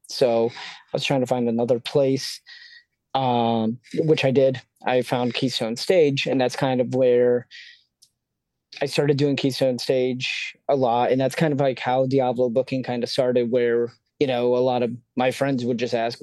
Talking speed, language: 185 wpm, English